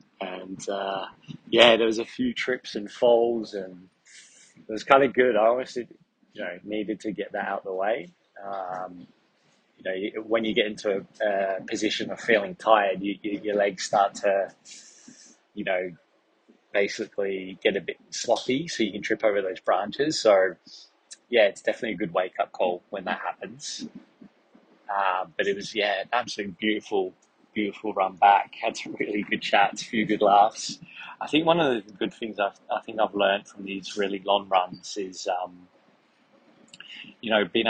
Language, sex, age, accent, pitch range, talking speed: English, male, 20-39, British, 95-115 Hz, 180 wpm